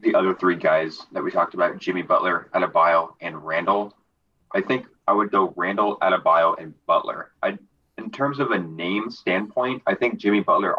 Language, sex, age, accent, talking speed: English, male, 20-39, American, 185 wpm